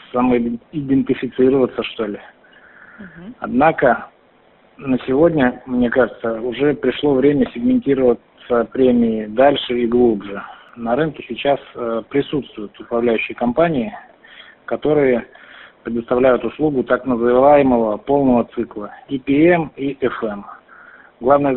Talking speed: 90 wpm